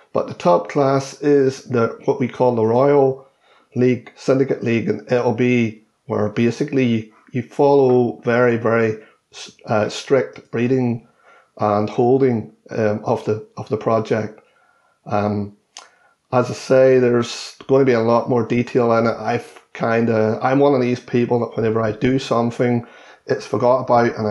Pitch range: 110-125 Hz